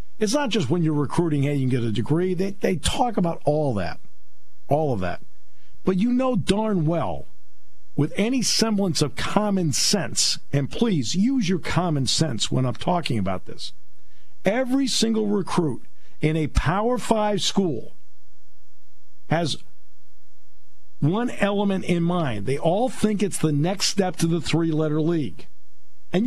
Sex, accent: male, American